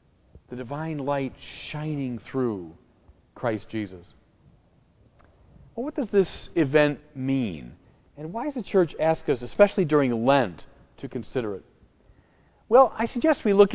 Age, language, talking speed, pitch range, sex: 40-59, English, 130 wpm, 125-185 Hz, male